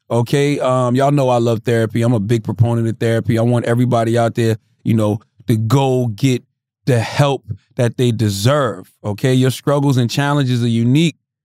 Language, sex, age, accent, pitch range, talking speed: English, male, 30-49, American, 120-145 Hz, 185 wpm